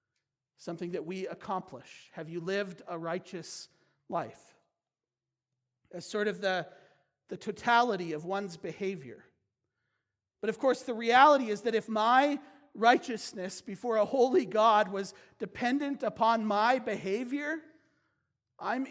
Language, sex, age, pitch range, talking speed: English, male, 40-59, 185-235 Hz, 125 wpm